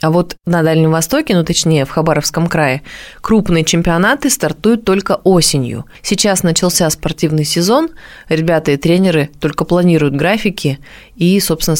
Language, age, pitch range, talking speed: Russian, 20-39, 155-185 Hz, 135 wpm